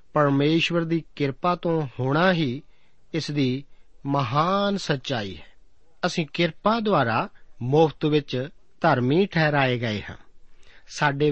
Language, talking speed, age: Punjabi, 110 wpm, 50-69